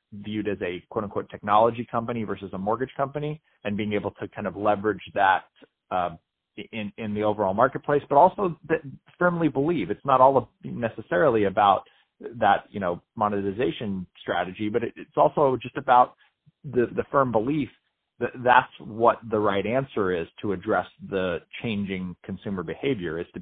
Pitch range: 100-125 Hz